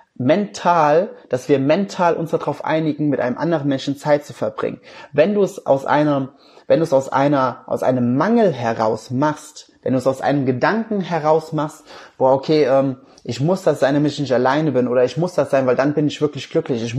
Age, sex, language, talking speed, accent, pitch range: 20-39, male, German, 210 wpm, German, 135-170 Hz